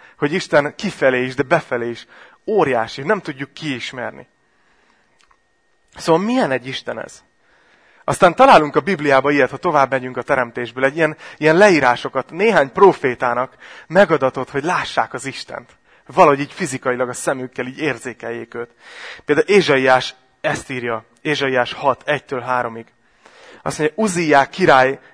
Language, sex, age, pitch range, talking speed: Hungarian, male, 30-49, 125-155 Hz, 135 wpm